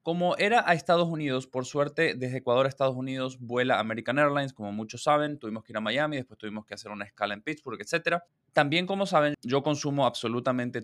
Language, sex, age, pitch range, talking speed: Spanish, male, 20-39, 115-160 Hz, 210 wpm